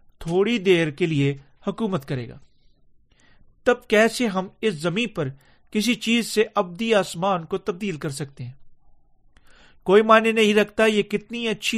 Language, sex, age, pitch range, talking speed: Urdu, male, 40-59, 155-205 Hz, 155 wpm